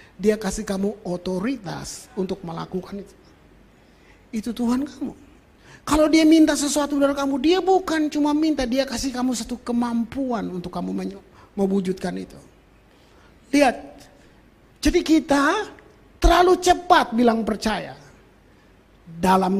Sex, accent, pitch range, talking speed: male, native, 180-275 Hz, 115 wpm